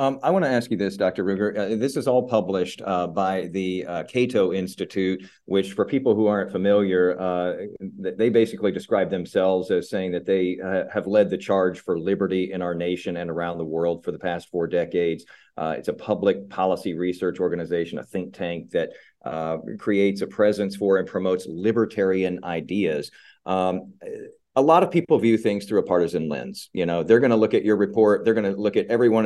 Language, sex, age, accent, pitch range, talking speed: English, male, 40-59, American, 95-135 Hz, 205 wpm